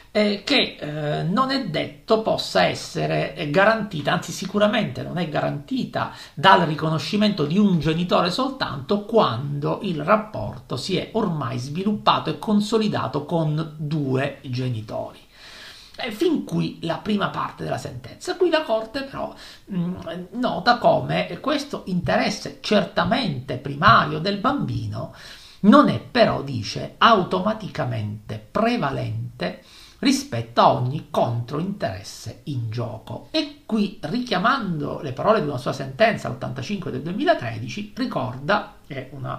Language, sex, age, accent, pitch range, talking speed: Italian, male, 50-69, native, 145-220 Hz, 120 wpm